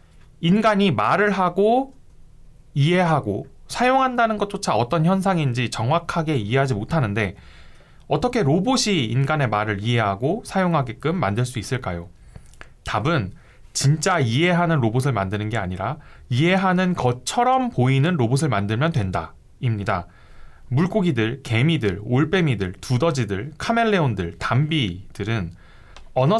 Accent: native